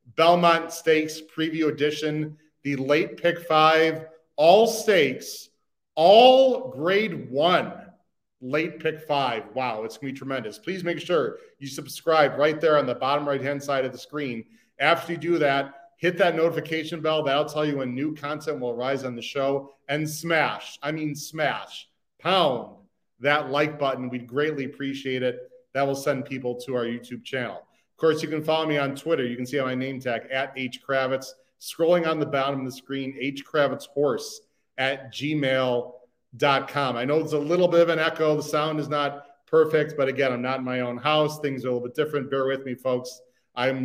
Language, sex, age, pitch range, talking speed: English, male, 40-59, 130-155 Hz, 185 wpm